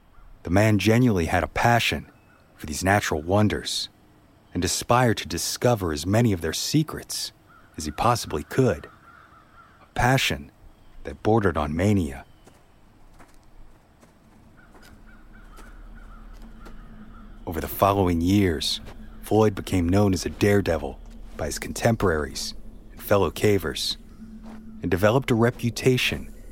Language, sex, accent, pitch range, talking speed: English, male, American, 80-115 Hz, 110 wpm